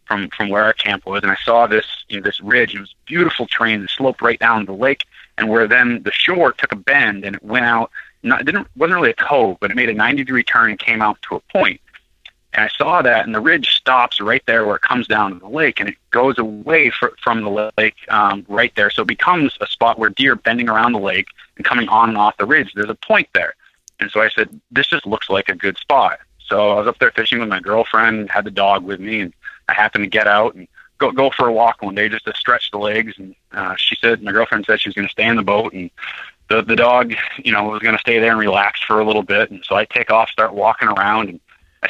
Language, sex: English, male